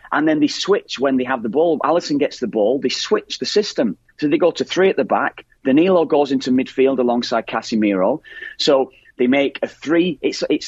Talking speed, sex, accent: 215 wpm, male, British